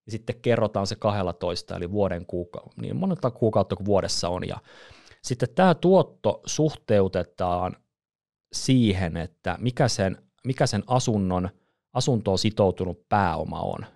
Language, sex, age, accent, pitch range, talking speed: Finnish, male, 30-49, native, 95-125 Hz, 130 wpm